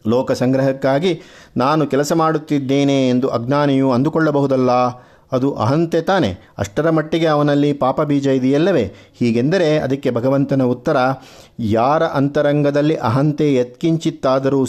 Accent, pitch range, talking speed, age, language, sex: native, 125-150 Hz, 100 wpm, 50-69, Kannada, male